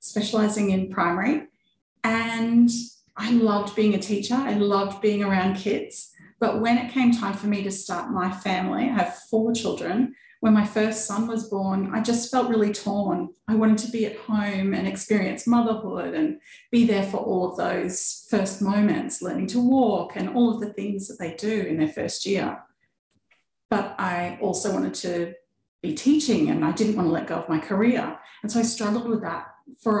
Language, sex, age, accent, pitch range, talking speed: English, female, 30-49, Australian, 185-230 Hz, 195 wpm